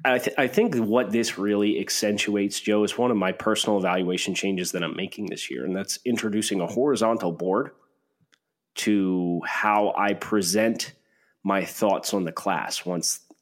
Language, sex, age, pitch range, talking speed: English, male, 30-49, 95-110 Hz, 160 wpm